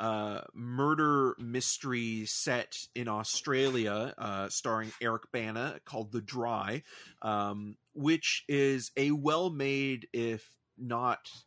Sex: male